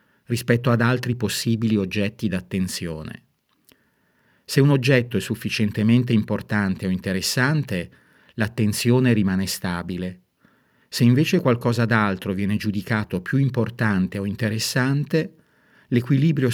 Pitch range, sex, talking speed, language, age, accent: 105-130 Hz, male, 100 wpm, Italian, 50-69, native